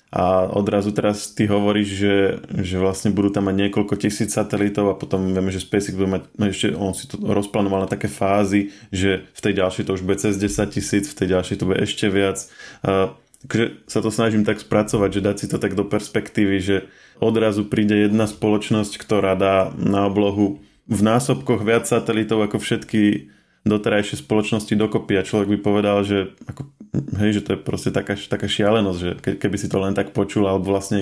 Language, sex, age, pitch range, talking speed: Slovak, male, 20-39, 95-105 Hz, 195 wpm